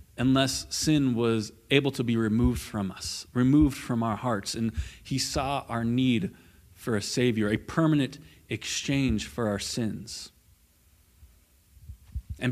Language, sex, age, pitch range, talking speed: English, male, 30-49, 100-135 Hz, 135 wpm